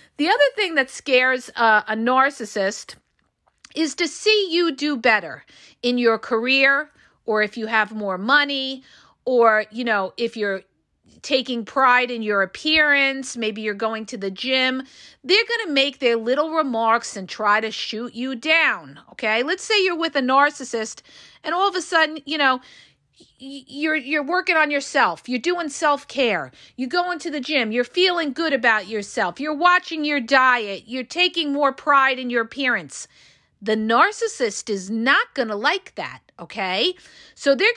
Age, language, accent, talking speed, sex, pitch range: 50-69, English, American, 165 wpm, female, 230-310 Hz